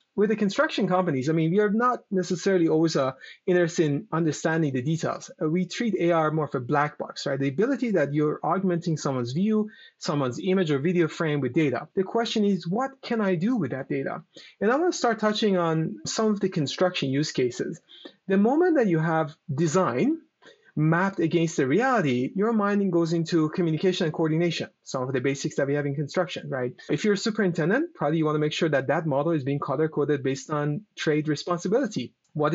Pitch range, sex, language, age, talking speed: 150-200 Hz, male, English, 30-49, 205 wpm